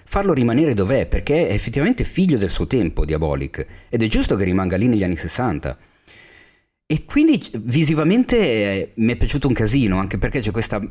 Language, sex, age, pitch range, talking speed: Italian, male, 40-59, 95-125 Hz, 175 wpm